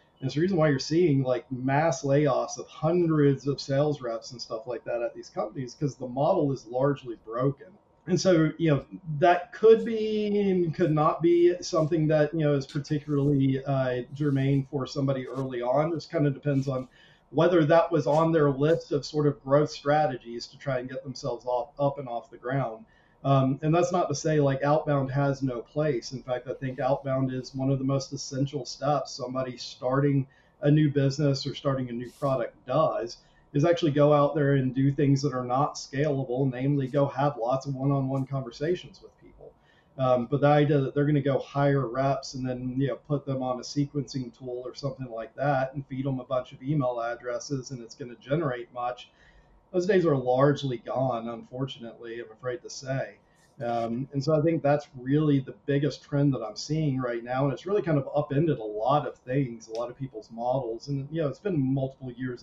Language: English